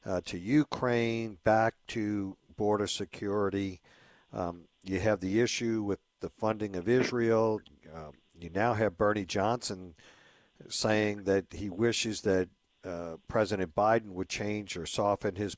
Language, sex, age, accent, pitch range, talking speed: English, male, 50-69, American, 95-110 Hz, 140 wpm